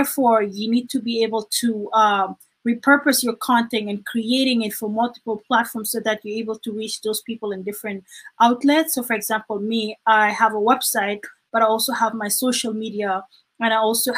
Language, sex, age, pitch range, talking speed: English, female, 20-39, 215-240 Hz, 195 wpm